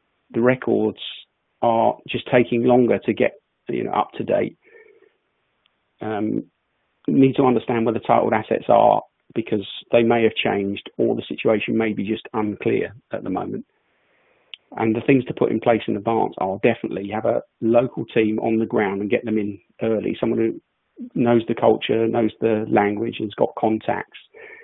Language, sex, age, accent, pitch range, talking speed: English, male, 40-59, British, 110-130 Hz, 180 wpm